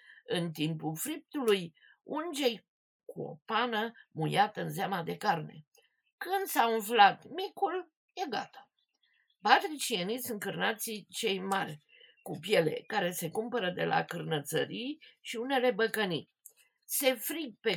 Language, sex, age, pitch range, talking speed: Romanian, female, 50-69, 185-260 Hz, 125 wpm